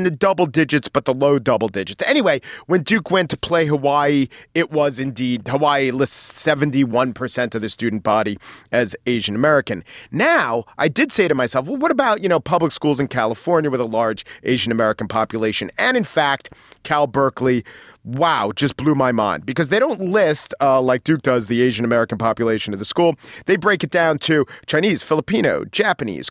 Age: 40-59